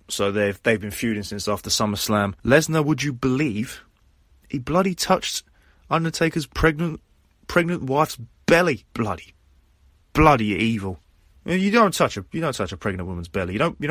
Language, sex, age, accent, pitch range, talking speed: English, male, 20-39, British, 95-140 Hz, 160 wpm